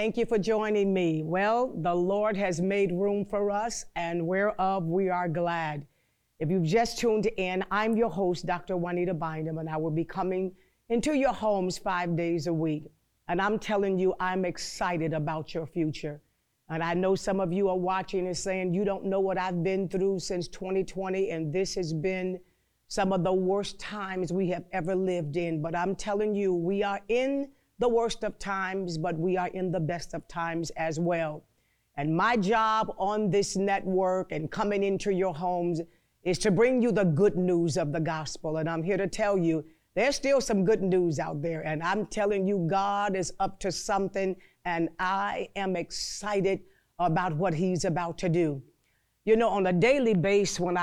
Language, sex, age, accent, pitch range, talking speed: English, female, 50-69, American, 170-200 Hz, 195 wpm